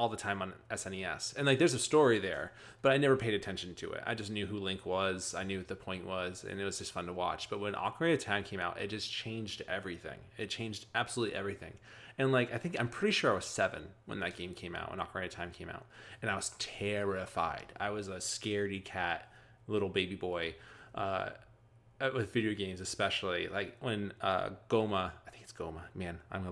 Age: 20-39